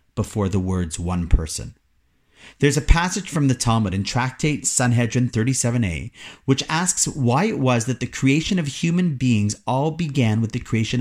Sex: male